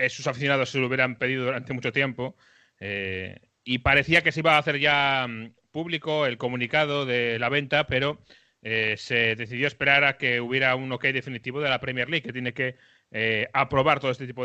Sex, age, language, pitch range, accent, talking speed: male, 30-49, Spanish, 125-145 Hz, Spanish, 200 wpm